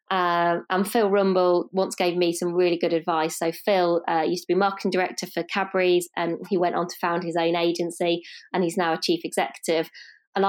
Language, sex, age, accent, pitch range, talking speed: English, female, 20-39, British, 170-195 Hz, 210 wpm